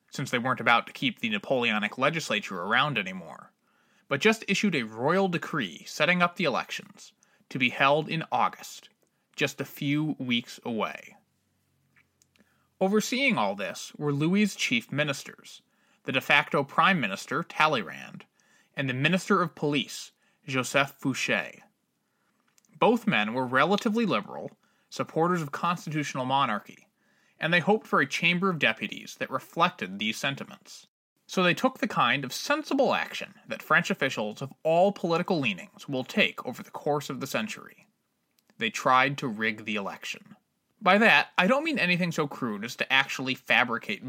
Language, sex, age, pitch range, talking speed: English, male, 20-39, 145-210 Hz, 155 wpm